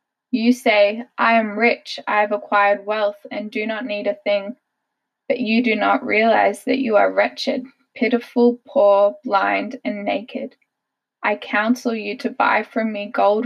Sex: female